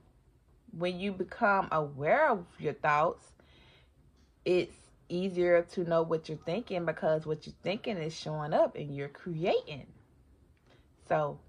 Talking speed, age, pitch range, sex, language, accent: 130 wpm, 30-49, 155-225 Hz, female, English, American